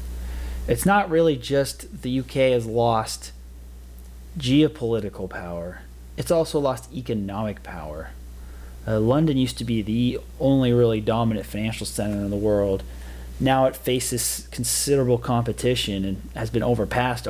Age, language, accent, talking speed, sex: 30-49, English, American, 130 wpm, male